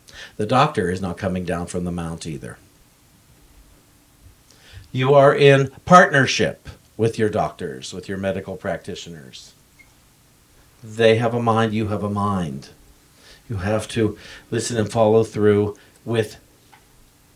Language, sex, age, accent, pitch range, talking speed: English, male, 50-69, American, 105-145 Hz, 130 wpm